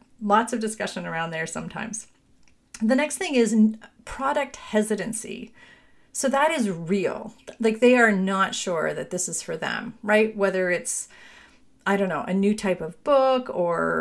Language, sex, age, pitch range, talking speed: English, female, 40-59, 195-245 Hz, 165 wpm